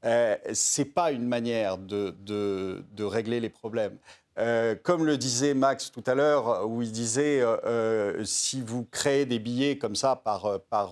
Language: French